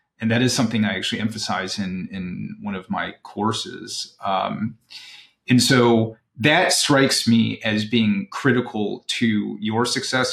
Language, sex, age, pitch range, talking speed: English, male, 30-49, 110-135 Hz, 145 wpm